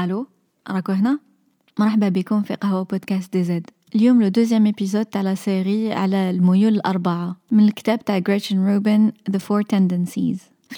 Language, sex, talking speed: Arabic, female, 155 wpm